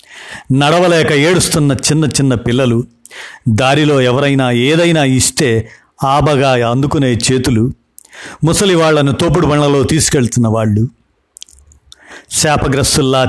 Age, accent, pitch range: 50-69, native, 120-155 Hz